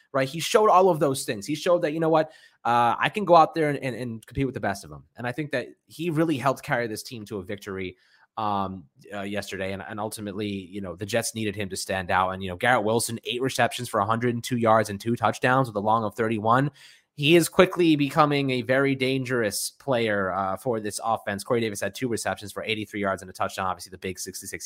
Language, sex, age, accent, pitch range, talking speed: English, male, 20-39, American, 100-140 Hz, 245 wpm